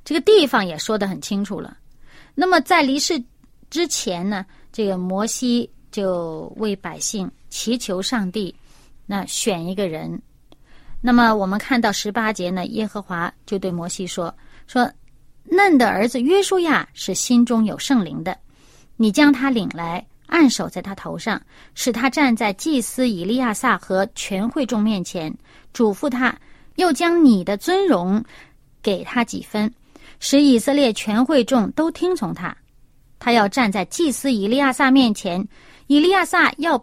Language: Chinese